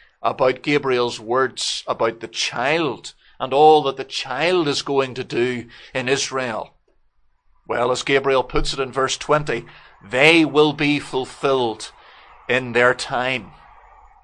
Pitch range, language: 130-200 Hz, English